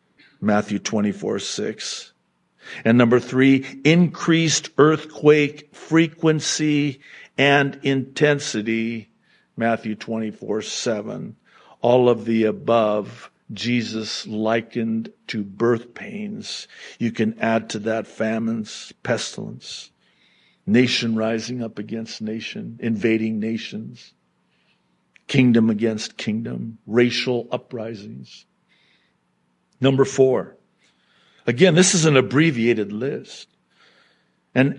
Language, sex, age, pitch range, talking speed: English, male, 50-69, 115-155 Hz, 90 wpm